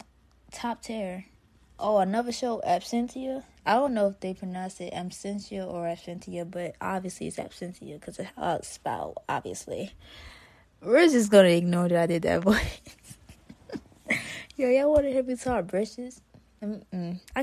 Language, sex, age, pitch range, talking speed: English, female, 20-39, 175-210 Hz, 150 wpm